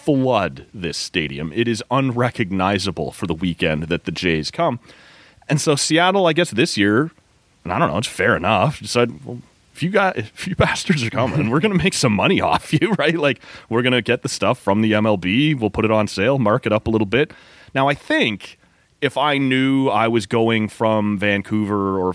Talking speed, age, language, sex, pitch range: 210 wpm, 30-49, English, male, 100-130 Hz